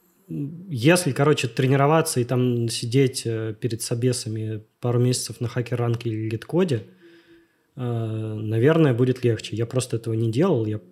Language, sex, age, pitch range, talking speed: Russian, male, 20-39, 115-140 Hz, 125 wpm